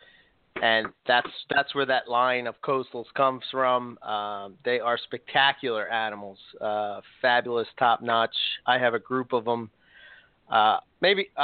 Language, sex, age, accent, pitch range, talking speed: English, male, 30-49, American, 120-140 Hz, 145 wpm